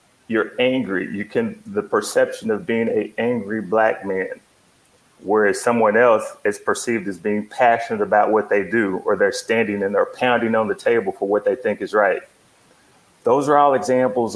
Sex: male